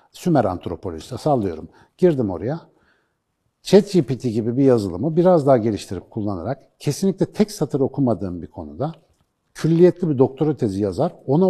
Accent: native